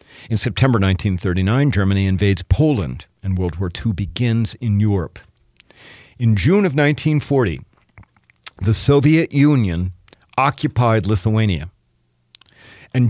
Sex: male